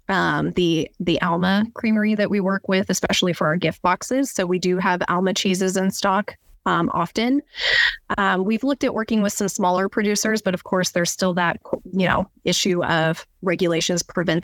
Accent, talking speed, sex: American, 185 wpm, female